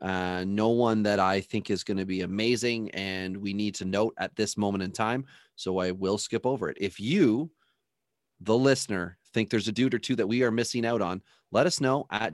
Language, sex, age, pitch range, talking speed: English, male, 30-49, 100-120 Hz, 225 wpm